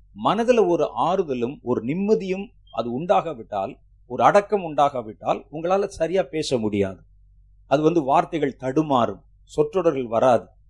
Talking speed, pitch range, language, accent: 125 wpm, 115-185 Hz, Tamil, native